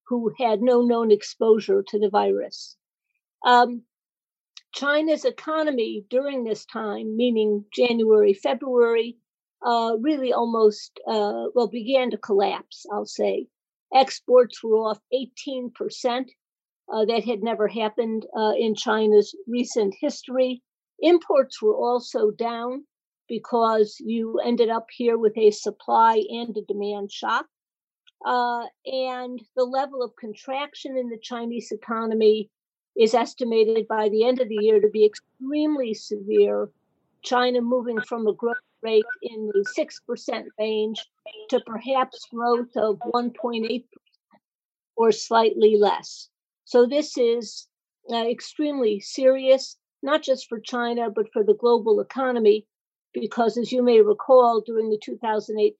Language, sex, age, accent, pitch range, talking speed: English, female, 50-69, American, 215-255 Hz, 125 wpm